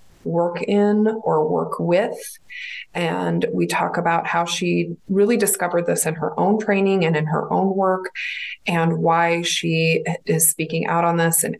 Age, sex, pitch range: 20-39, female, 165-205 Hz